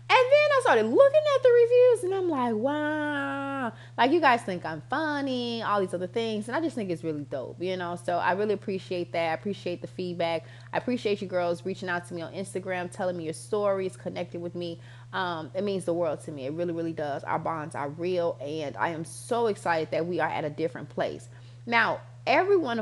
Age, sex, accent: 20-39, female, American